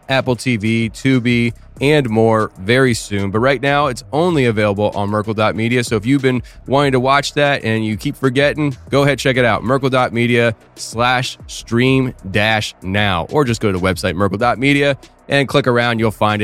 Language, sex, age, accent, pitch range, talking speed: English, male, 20-39, American, 110-145 Hz, 180 wpm